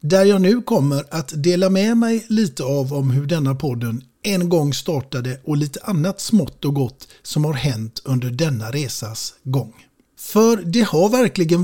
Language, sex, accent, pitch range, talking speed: Swedish, male, native, 130-180 Hz, 175 wpm